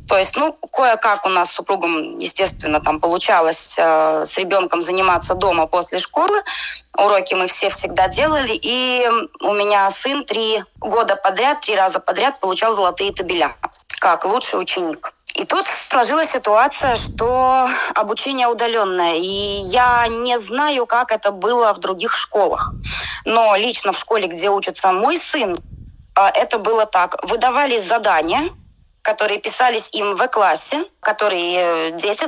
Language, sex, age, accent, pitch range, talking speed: Russian, female, 20-39, native, 185-250 Hz, 145 wpm